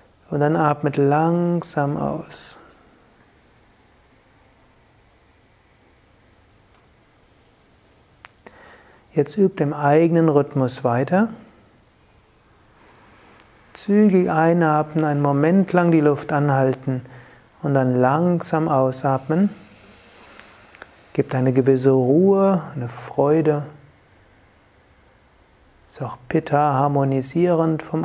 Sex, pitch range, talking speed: male, 125-160 Hz, 75 wpm